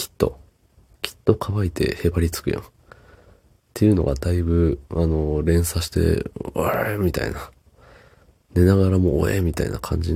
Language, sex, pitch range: Japanese, male, 80-100 Hz